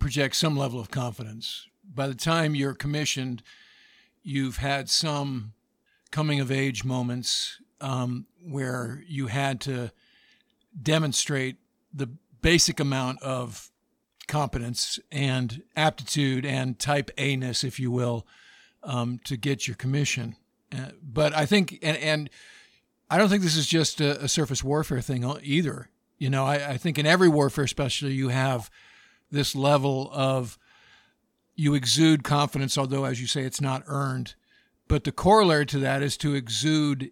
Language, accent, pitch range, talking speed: English, American, 130-155 Hz, 145 wpm